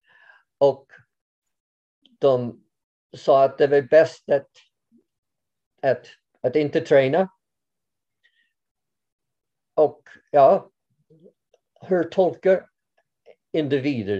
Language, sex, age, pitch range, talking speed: Swedish, male, 50-69, 125-170 Hz, 70 wpm